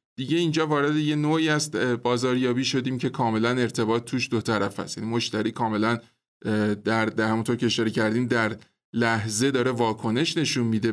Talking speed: 160 wpm